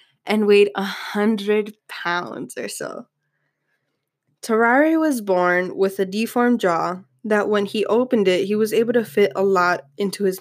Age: 10-29